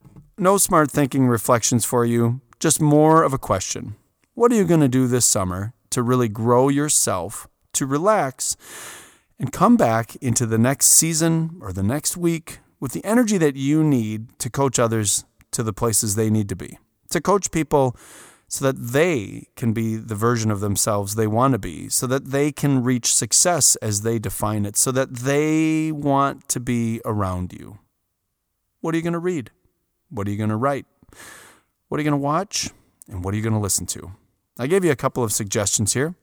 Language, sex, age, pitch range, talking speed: English, male, 30-49, 110-145 Hz, 200 wpm